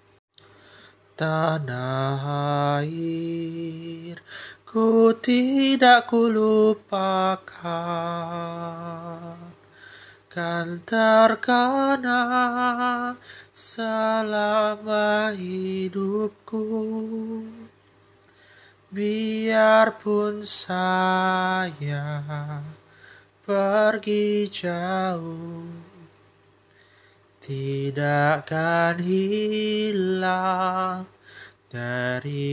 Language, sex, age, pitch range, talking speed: Indonesian, male, 20-39, 160-220 Hz, 30 wpm